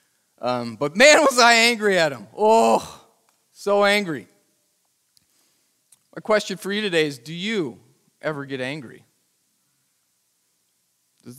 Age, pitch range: 40-59, 130-165 Hz